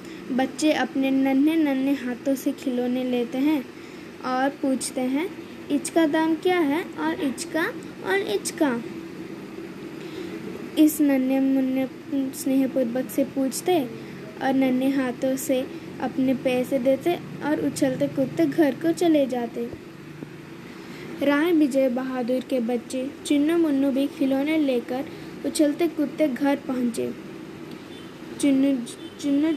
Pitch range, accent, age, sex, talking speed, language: 265-320 Hz, native, 20-39, female, 120 wpm, Hindi